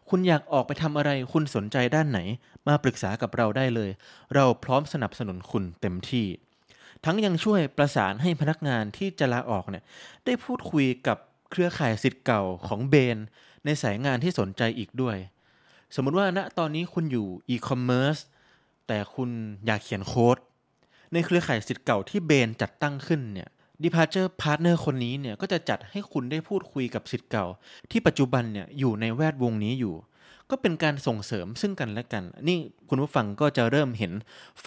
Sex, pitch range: male, 110-150 Hz